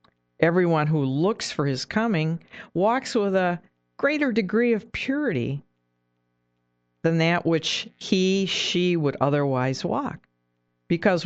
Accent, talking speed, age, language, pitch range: American, 115 wpm, 50-69, English, 115-185 Hz